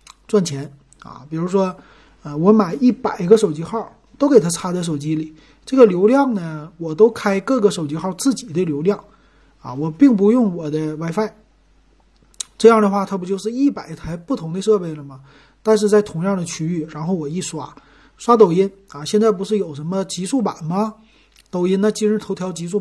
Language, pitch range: Chinese, 160-215 Hz